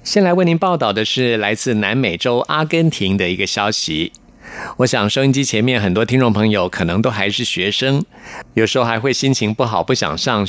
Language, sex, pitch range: Chinese, male, 105-140 Hz